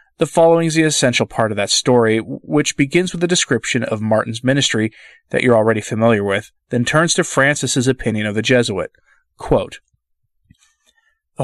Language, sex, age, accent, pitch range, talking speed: English, male, 30-49, American, 110-150 Hz, 170 wpm